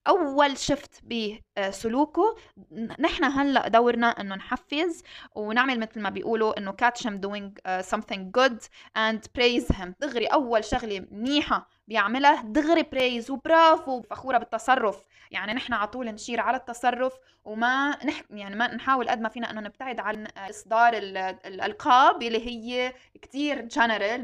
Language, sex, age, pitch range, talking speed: Arabic, female, 20-39, 210-260 Hz, 135 wpm